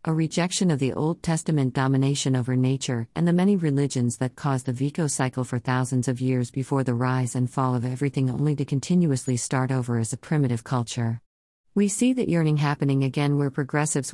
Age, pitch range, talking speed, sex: 50-69, 130-155 Hz, 195 wpm, female